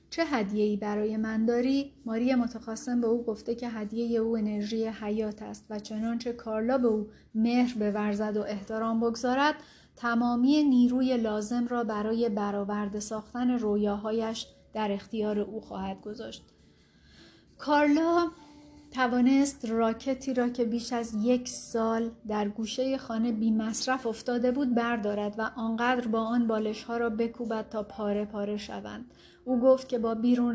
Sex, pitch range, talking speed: female, 215-245 Hz, 140 wpm